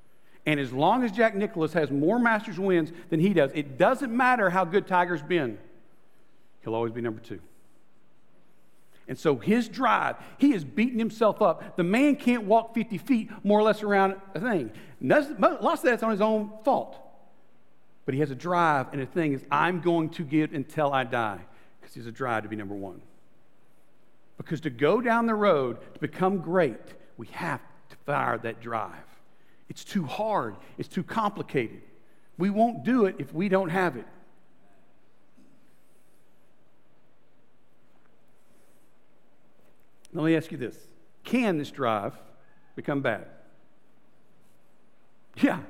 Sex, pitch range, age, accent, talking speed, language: male, 145-225 Hz, 50-69, American, 155 wpm, English